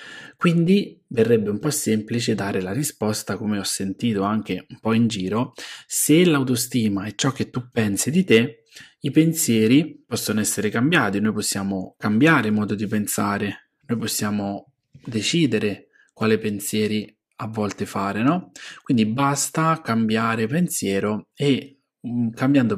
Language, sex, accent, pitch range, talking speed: Italian, male, native, 105-140 Hz, 135 wpm